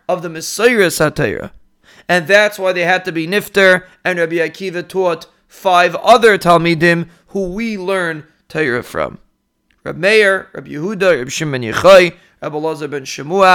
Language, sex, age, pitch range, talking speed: English, male, 30-49, 170-225 Hz, 135 wpm